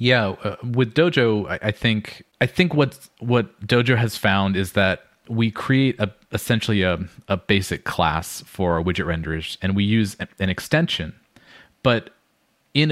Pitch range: 95-115 Hz